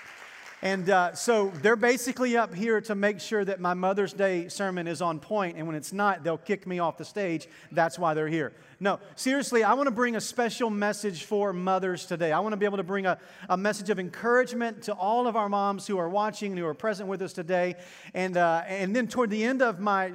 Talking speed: 235 wpm